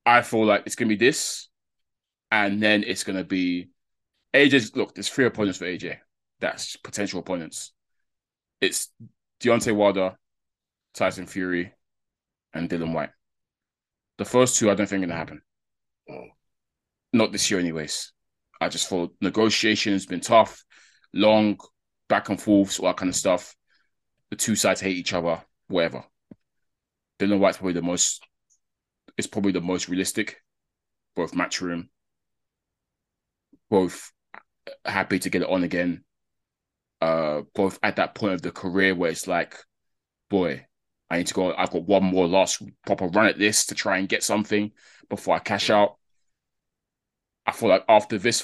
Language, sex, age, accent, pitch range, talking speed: English, male, 20-39, British, 90-105 Hz, 160 wpm